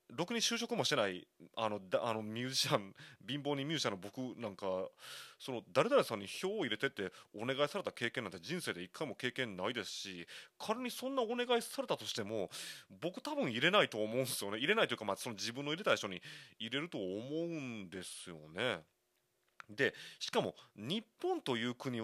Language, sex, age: Japanese, male, 30-49